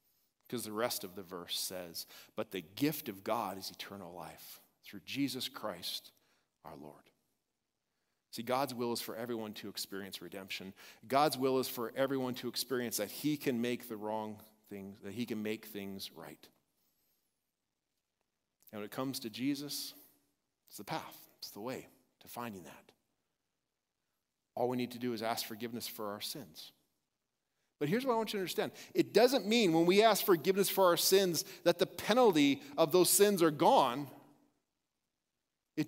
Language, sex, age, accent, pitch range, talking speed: English, male, 40-59, American, 115-175 Hz, 170 wpm